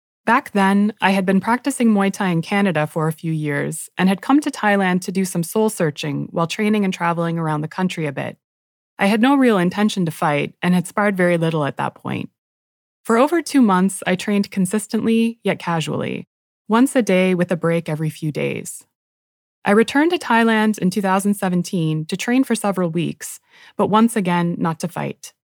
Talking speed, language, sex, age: 190 wpm, English, female, 20-39